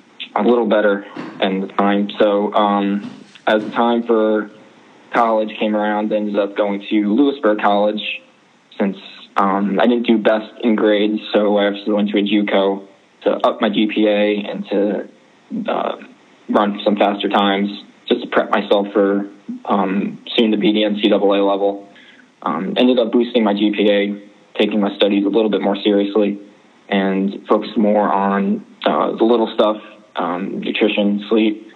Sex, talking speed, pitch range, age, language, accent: male, 160 wpm, 100-105 Hz, 20-39, English, American